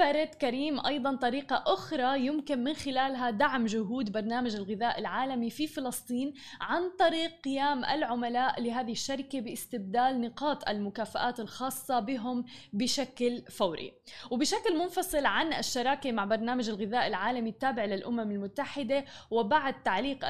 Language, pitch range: Arabic, 235-275 Hz